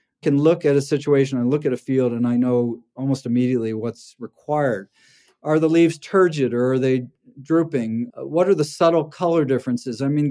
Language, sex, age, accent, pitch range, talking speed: English, male, 40-59, American, 125-160 Hz, 185 wpm